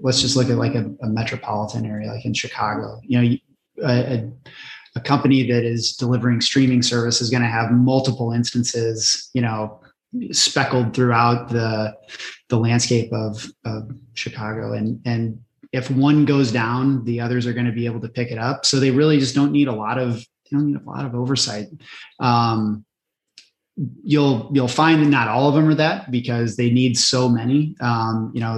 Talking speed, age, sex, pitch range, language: 190 wpm, 20-39, male, 115-130 Hz, English